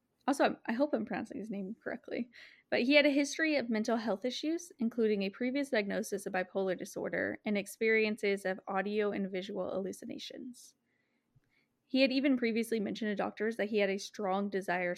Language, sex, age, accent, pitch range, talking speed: English, female, 20-39, American, 195-245 Hz, 175 wpm